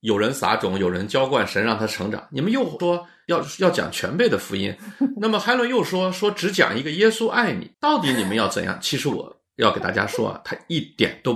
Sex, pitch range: male, 125-195 Hz